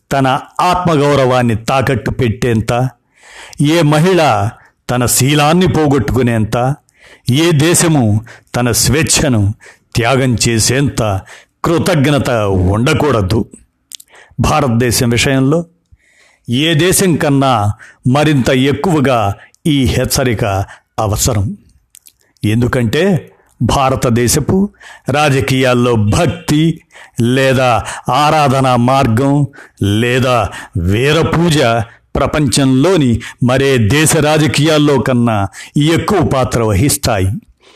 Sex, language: male, Telugu